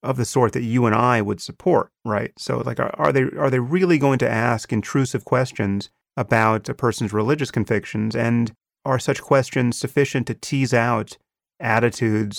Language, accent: English, American